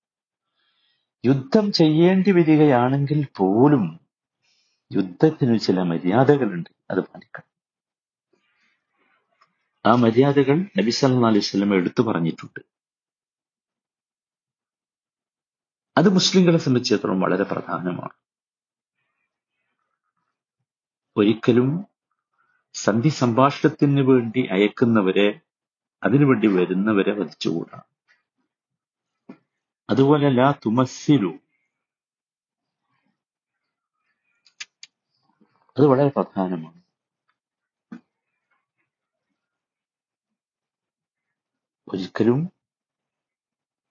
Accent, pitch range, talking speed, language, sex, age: native, 100-150 Hz, 45 wpm, Malayalam, male, 50-69